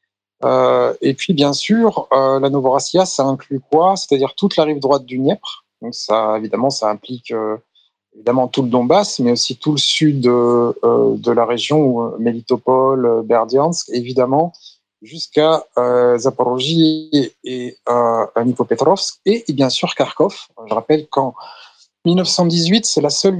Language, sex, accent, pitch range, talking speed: French, male, French, 125-155 Hz, 150 wpm